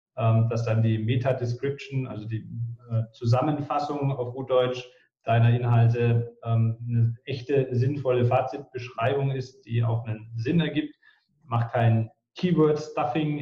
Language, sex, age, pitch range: German, male, 30-49, 115-130 Hz